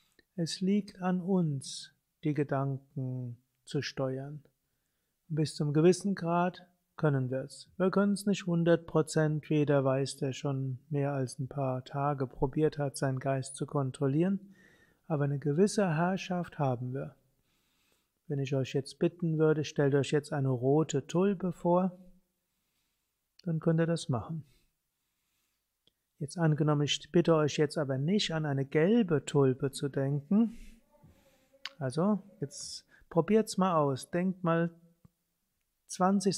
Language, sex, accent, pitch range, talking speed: German, male, German, 145-185 Hz, 135 wpm